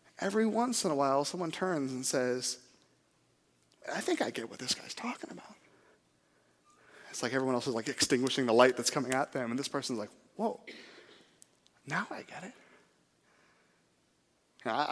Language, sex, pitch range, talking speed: Polish, male, 130-175 Hz, 165 wpm